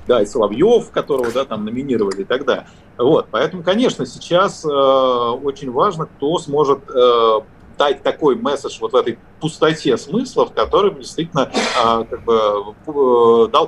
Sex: male